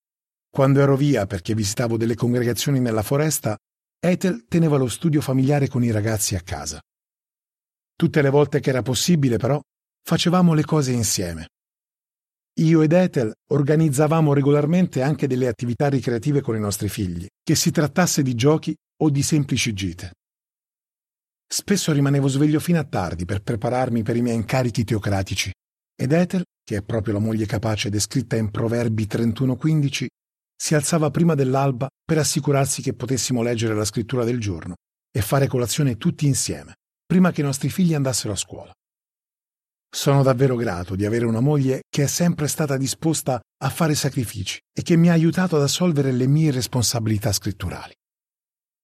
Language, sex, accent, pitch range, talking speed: Italian, male, native, 110-155 Hz, 160 wpm